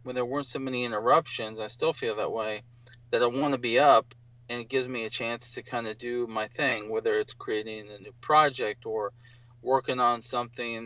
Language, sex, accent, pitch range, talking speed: English, male, American, 120-135 Hz, 215 wpm